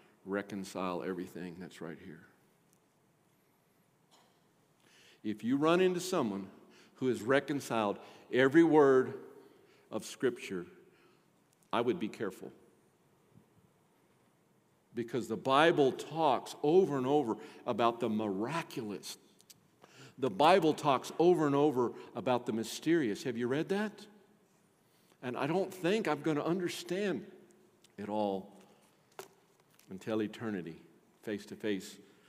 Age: 50-69